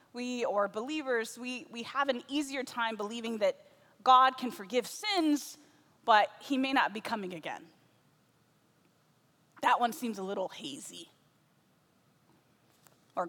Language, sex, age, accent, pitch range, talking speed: English, female, 20-39, American, 205-275 Hz, 130 wpm